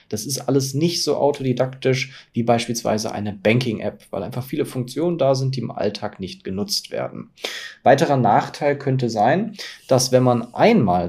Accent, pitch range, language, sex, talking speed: German, 115-140 Hz, German, male, 160 wpm